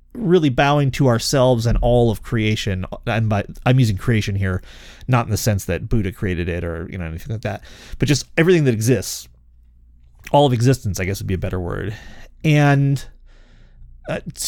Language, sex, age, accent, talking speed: English, male, 30-49, American, 185 wpm